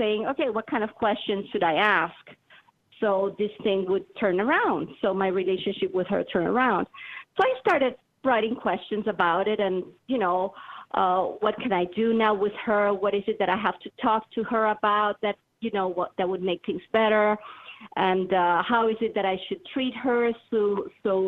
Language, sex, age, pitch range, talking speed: English, female, 40-59, 195-255 Hz, 205 wpm